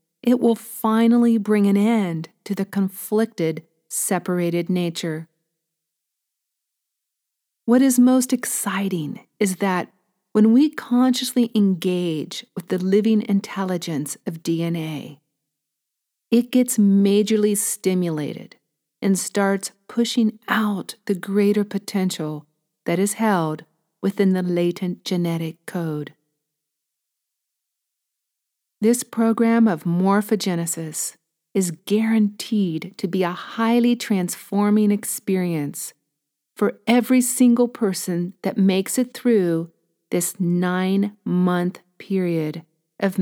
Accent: American